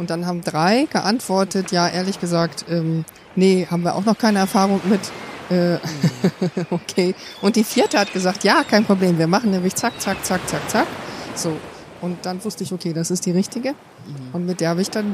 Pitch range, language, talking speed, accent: 175-195 Hz, German, 200 wpm, German